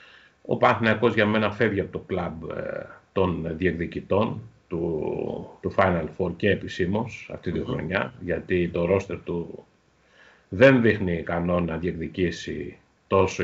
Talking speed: 135 wpm